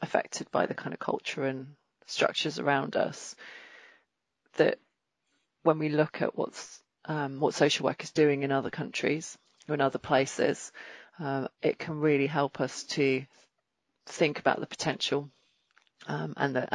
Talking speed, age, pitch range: 155 wpm, 40-59, 135-160 Hz